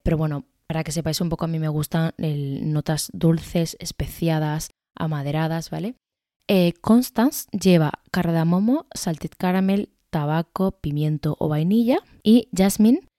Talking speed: 125 wpm